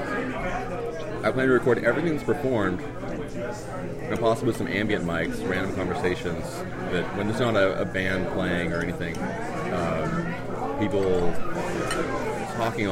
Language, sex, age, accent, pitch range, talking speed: English, male, 30-49, American, 90-115 Hz, 125 wpm